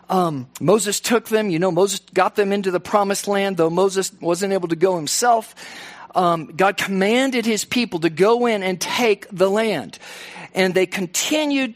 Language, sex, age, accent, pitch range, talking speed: English, male, 50-69, American, 175-220 Hz, 180 wpm